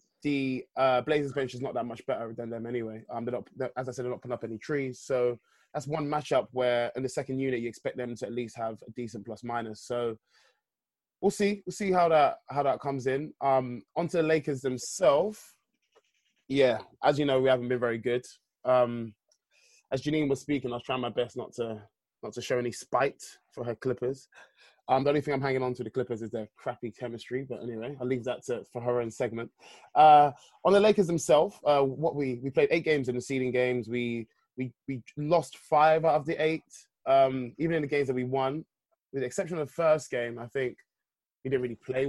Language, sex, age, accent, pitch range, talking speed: English, male, 20-39, British, 120-145 Hz, 225 wpm